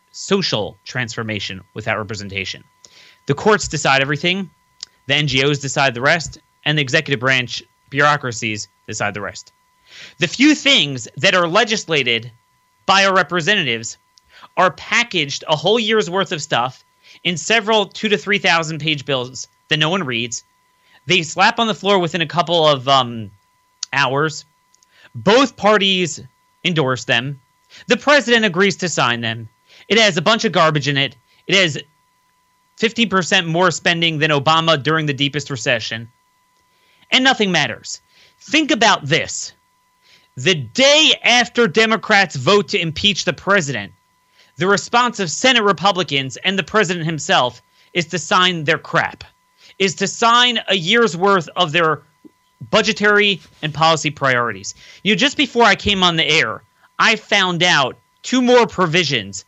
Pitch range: 140-215 Hz